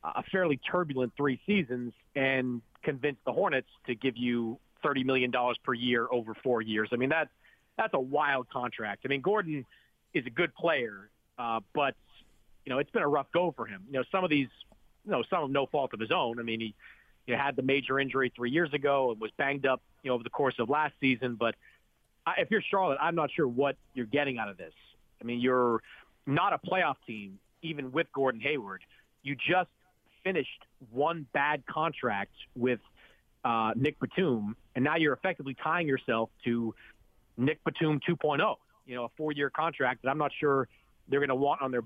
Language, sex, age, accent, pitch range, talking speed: English, male, 40-59, American, 120-150 Hz, 200 wpm